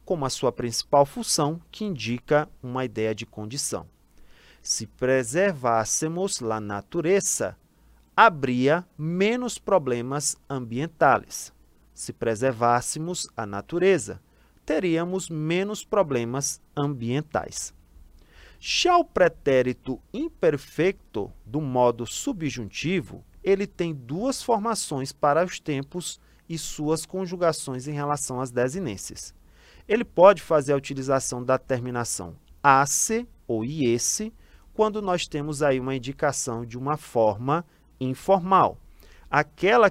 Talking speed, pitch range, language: 105 wpm, 120-170 Hz, Portuguese